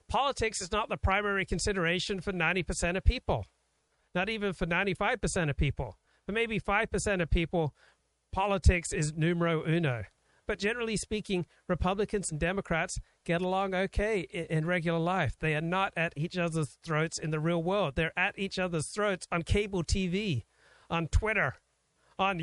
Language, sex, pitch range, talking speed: English, male, 140-190 Hz, 160 wpm